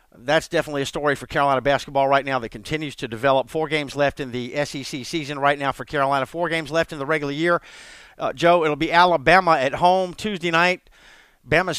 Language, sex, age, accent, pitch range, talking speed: English, male, 50-69, American, 140-165 Hz, 210 wpm